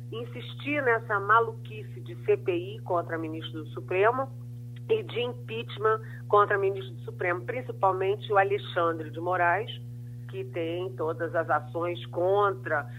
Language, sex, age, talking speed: Portuguese, female, 40-59, 125 wpm